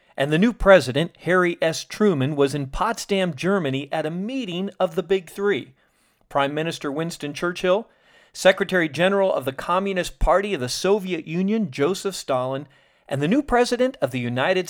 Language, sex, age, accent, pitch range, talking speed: English, male, 40-59, American, 135-200 Hz, 165 wpm